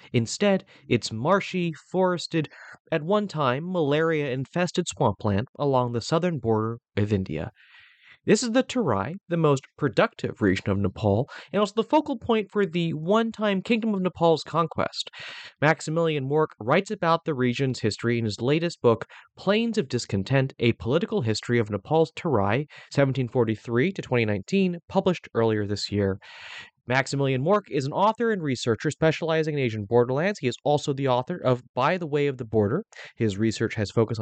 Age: 30-49